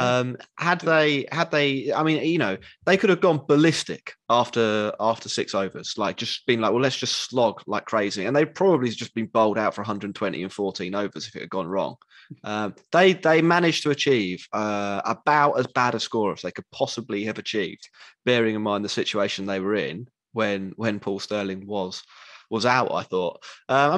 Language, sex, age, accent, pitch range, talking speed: English, male, 20-39, British, 105-145 Hz, 205 wpm